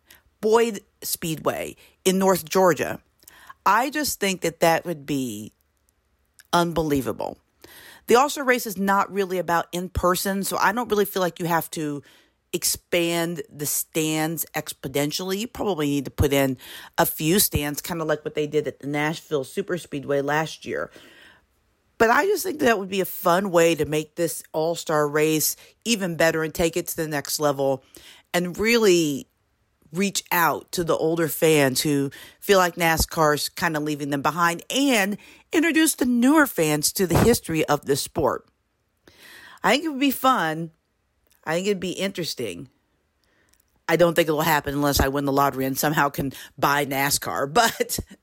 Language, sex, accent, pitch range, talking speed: English, female, American, 150-200 Hz, 170 wpm